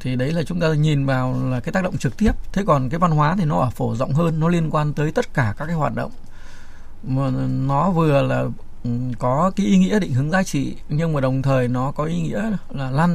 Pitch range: 125-165 Hz